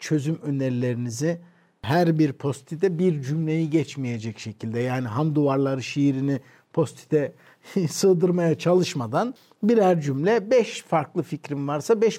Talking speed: 115 wpm